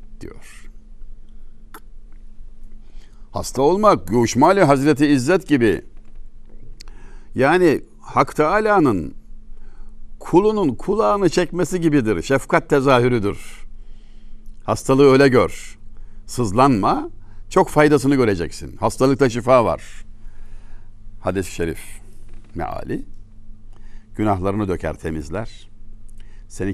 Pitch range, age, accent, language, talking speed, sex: 100-120 Hz, 60-79, native, Turkish, 75 wpm, male